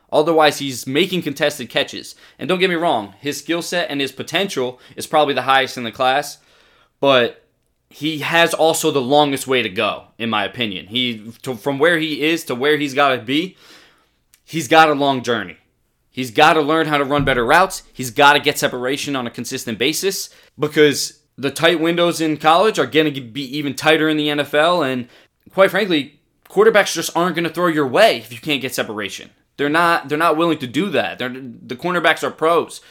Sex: male